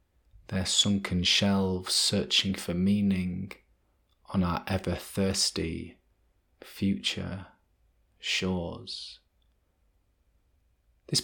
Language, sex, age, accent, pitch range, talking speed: English, male, 30-49, British, 90-100 Hz, 70 wpm